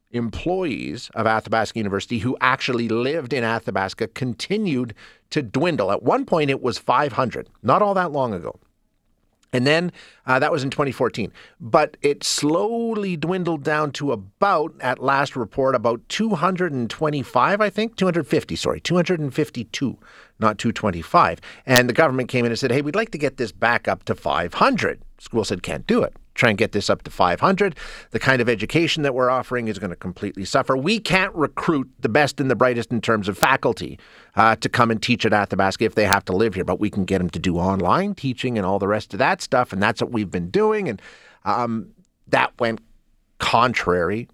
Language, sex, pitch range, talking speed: English, male, 110-155 Hz, 190 wpm